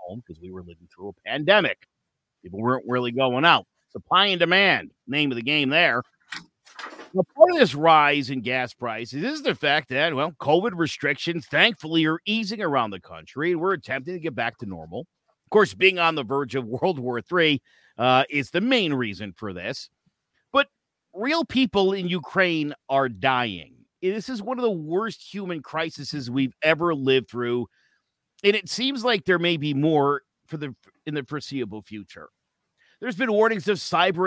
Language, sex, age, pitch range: English, male, 50-69, 130-185 Hz